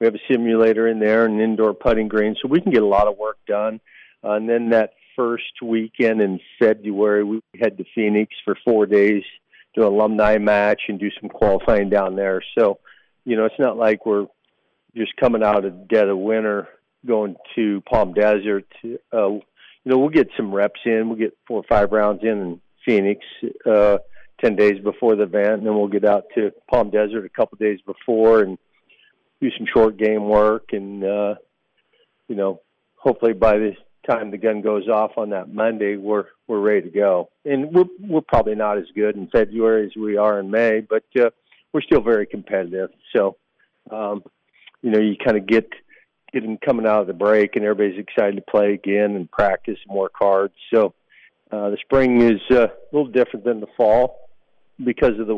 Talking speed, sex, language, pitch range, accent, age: 200 wpm, male, English, 105-115 Hz, American, 50-69